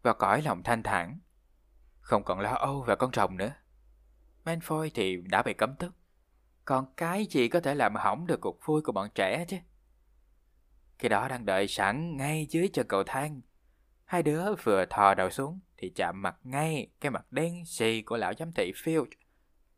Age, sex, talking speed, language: 20-39, male, 190 wpm, Vietnamese